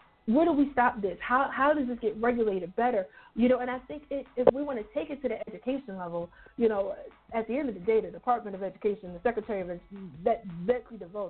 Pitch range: 210-290 Hz